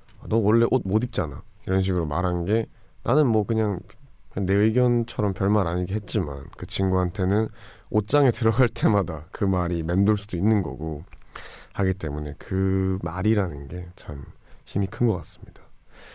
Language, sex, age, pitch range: Korean, male, 20-39, 90-115 Hz